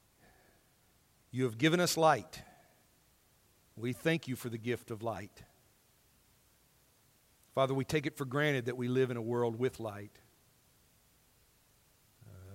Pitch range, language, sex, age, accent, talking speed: 115-140 Hz, English, male, 50-69, American, 135 wpm